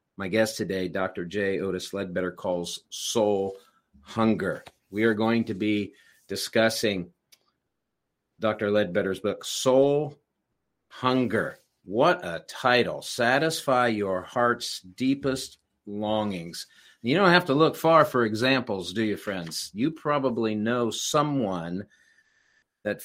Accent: American